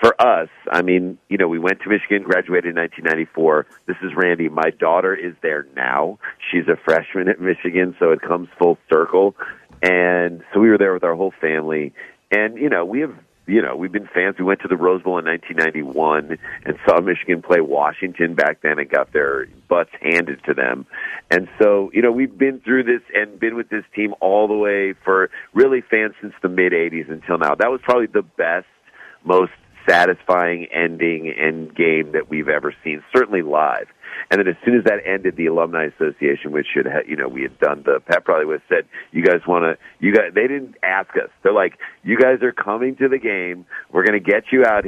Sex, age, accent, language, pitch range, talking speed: male, 40-59, American, English, 85-115 Hz, 210 wpm